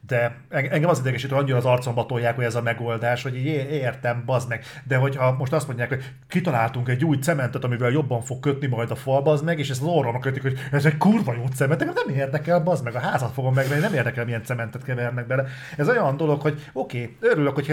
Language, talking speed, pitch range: Hungarian, 230 wpm, 120-145 Hz